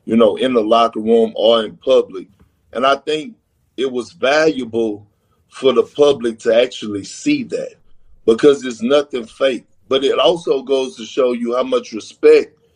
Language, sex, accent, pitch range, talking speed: English, male, American, 115-165 Hz, 170 wpm